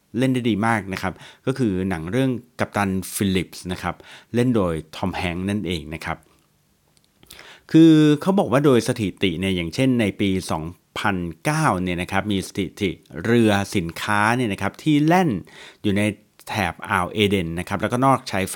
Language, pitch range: Thai, 95-125 Hz